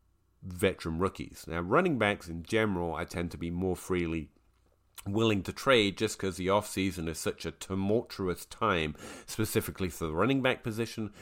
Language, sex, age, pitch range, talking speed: English, male, 30-49, 85-110 Hz, 165 wpm